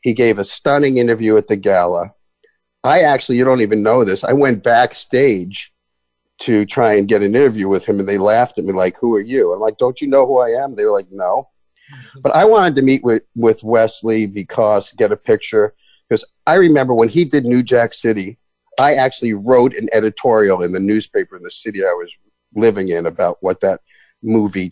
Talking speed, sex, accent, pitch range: 210 wpm, male, American, 105-155 Hz